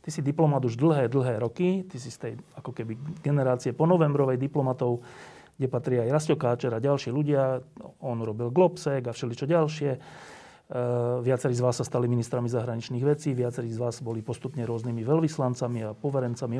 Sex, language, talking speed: male, Slovak, 175 wpm